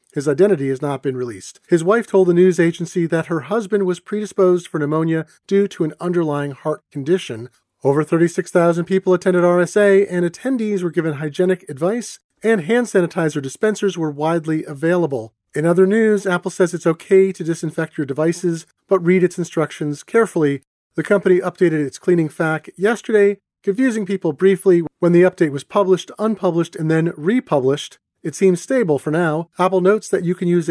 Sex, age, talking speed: male, 40-59, 175 wpm